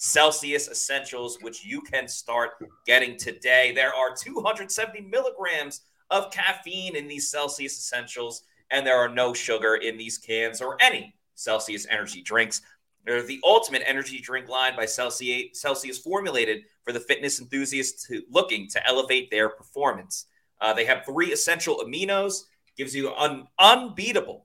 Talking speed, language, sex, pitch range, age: 145 wpm, English, male, 120-175 Hz, 30-49